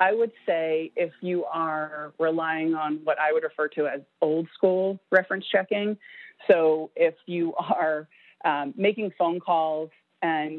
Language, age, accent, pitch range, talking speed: English, 30-49, American, 155-190 Hz, 155 wpm